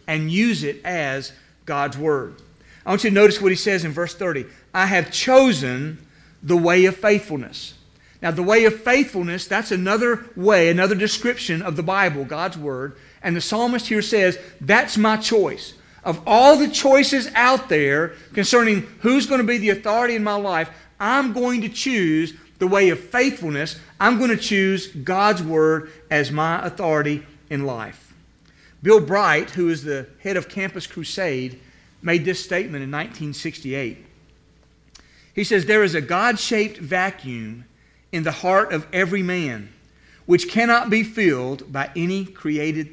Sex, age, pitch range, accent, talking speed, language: male, 50-69, 155-210 Hz, American, 160 wpm, English